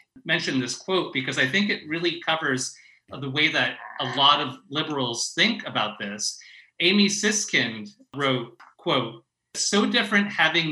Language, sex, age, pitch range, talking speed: English, male, 30-49, 130-180 Hz, 150 wpm